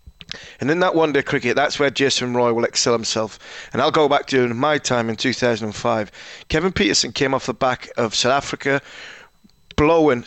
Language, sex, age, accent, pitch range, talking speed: English, male, 30-49, British, 115-140 Hz, 180 wpm